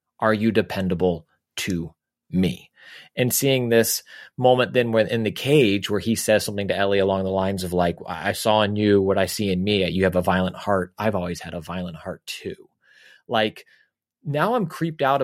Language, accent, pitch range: English, American, 95-115 Hz